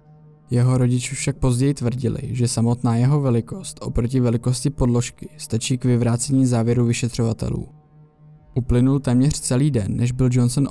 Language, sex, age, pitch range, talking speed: Czech, male, 20-39, 120-130 Hz, 135 wpm